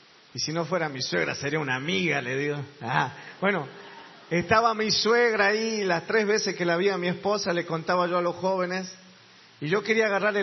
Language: Spanish